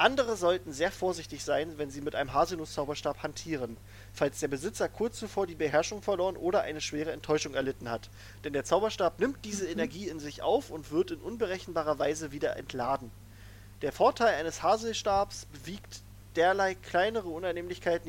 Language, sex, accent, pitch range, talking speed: German, male, German, 115-185 Hz, 165 wpm